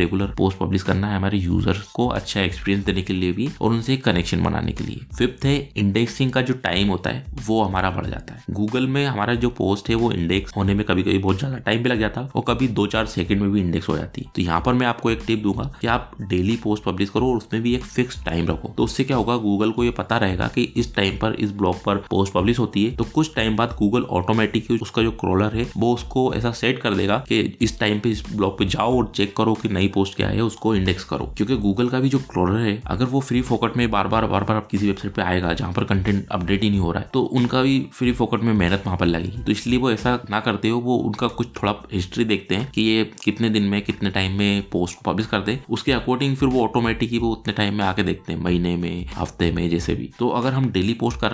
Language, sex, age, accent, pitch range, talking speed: Hindi, male, 20-39, native, 100-120 Hz, 170 wpm